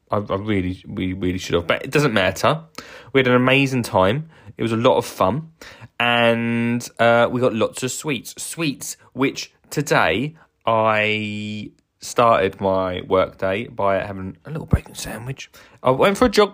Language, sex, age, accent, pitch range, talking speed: English, male, 20-39, British, 95-140 Hz, 170 wpm